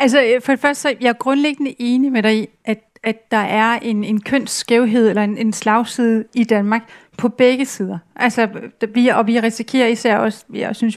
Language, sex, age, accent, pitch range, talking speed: Danish, female, 40-59, native, 215-245 Hz, 205 wpm